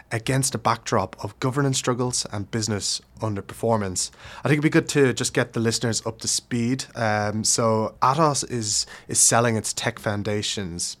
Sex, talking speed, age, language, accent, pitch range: male, 165 wpm, 20-39, English, Irish, 100-120 Hz